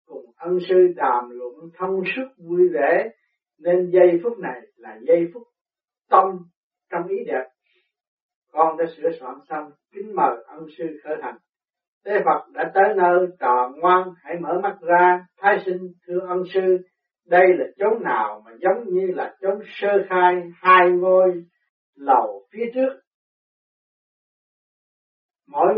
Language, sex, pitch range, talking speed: Vietnamese, male, 175-225 Hz, 150 wpm